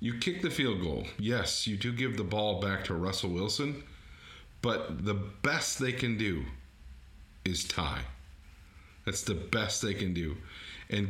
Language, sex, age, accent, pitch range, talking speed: English, male, 40-59, American, 85-115 Hz, 160 wpm